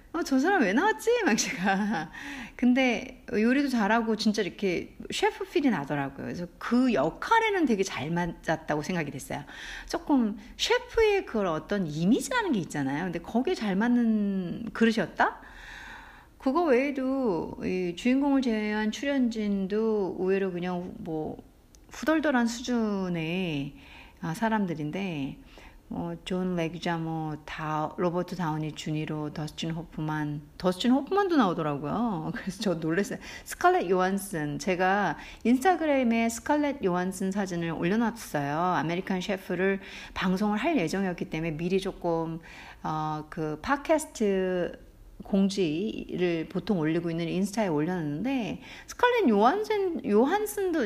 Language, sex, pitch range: Korean, female, 165-255 Hz